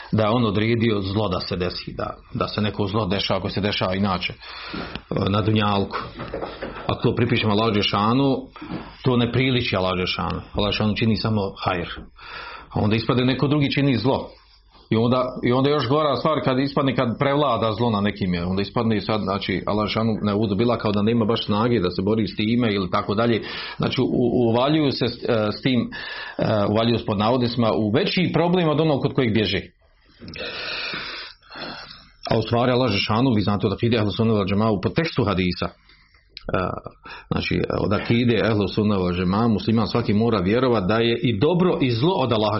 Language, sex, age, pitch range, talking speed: Croatian, male, 40-59, 100-120 Hz, 175 wpm